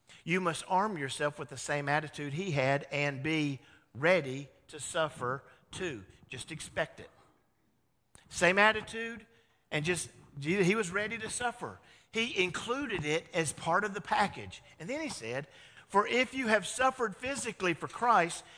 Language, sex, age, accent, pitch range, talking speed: English, male, 50-69, American, 135-205 Hz, 155 wpm